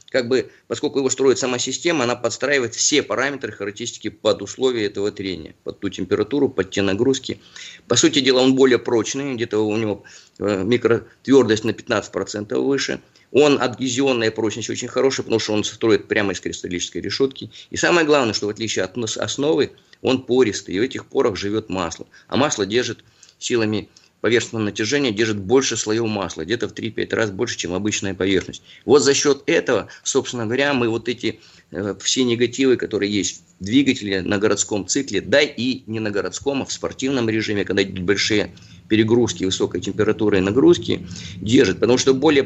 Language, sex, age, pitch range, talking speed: Russian, male, 30-49, 100-130 Hz, 170 wpm